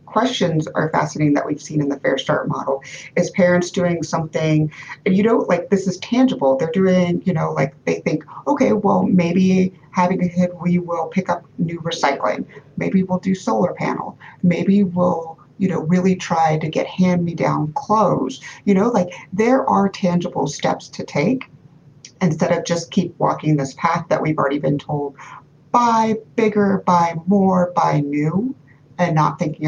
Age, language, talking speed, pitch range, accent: 30-49, English, 170 wpm, 150-200 Hz, American